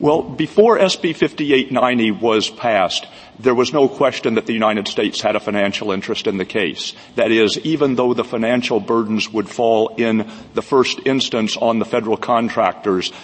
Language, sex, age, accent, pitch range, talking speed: English, male, 50-69, American, 105-115 Hz, 170 wpm